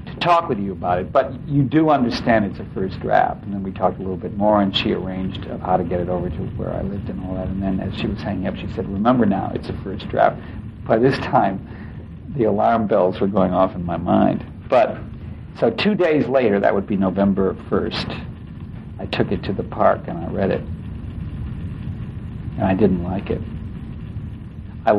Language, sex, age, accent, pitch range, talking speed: English, male, 60-79, American, 95-110 Hz, 215 wpm